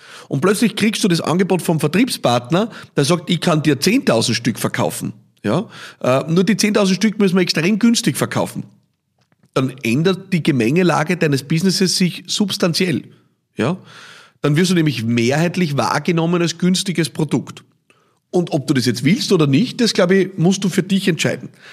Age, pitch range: 40-59, 145-185 Hz